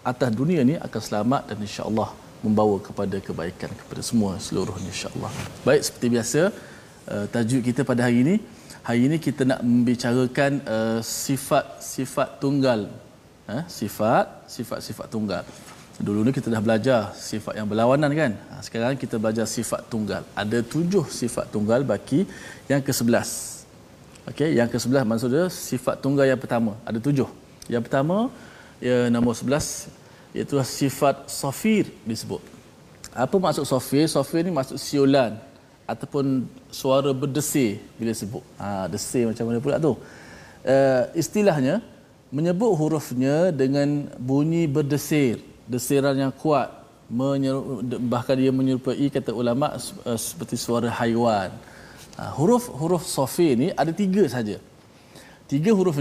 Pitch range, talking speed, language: 115-140 Hz, 130 wpm, Malayalam